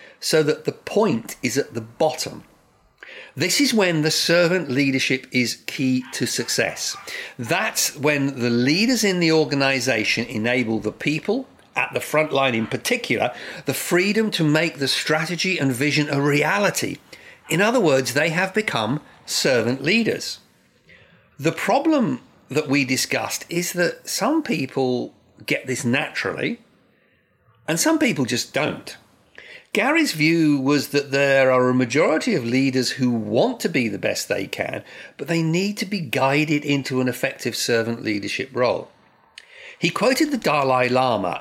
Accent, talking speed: British, 150 wpm